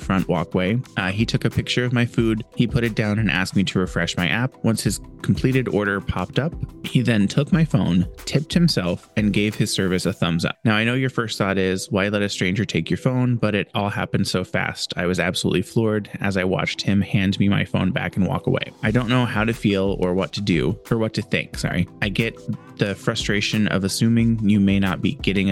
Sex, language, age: male, English, 20-39